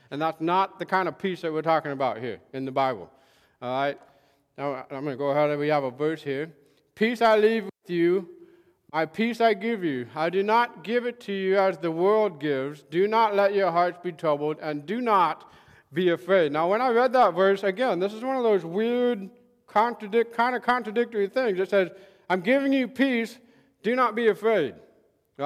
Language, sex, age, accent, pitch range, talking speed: English, male, 40-59, American, 175-225 Hz, 215 wpm